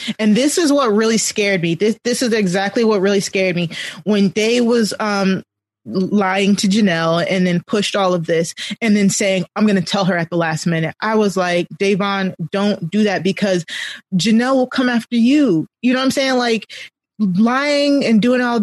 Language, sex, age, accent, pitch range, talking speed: English, female, 20-39, American, 185-225 Hz, 205 wpm